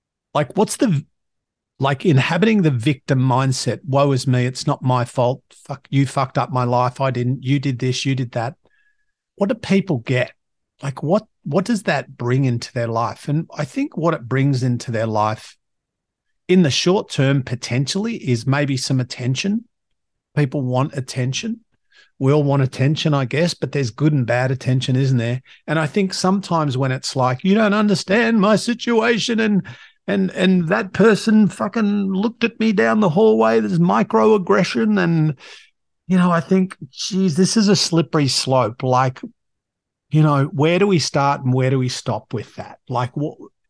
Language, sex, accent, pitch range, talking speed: English, male, Australian, 130-190 Hz, 180 wpm